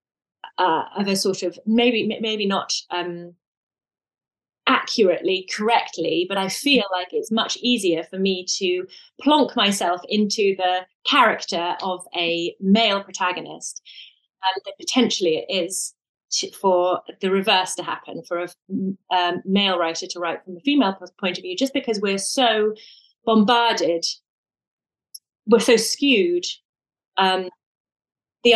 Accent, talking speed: British, 130 wpm